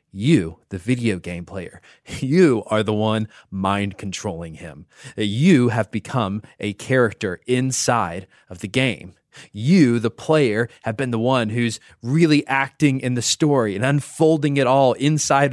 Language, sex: English, male